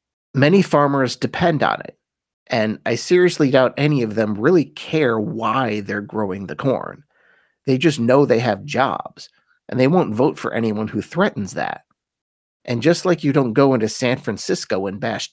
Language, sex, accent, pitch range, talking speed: English, male, American, 110-145 Hz, 175 wpm